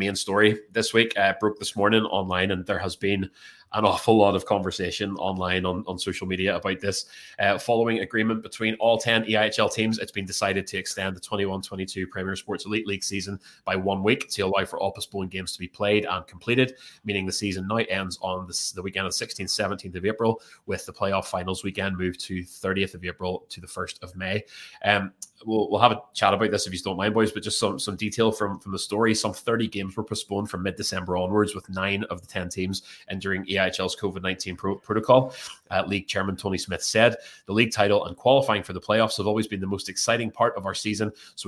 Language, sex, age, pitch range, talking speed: English, male, 20-39, 95-105 Hz, 225 wpm